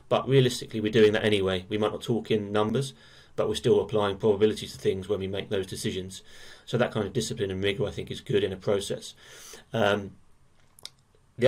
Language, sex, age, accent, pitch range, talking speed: English, male, 30-49, British, 100-110 Hz, 210 wpm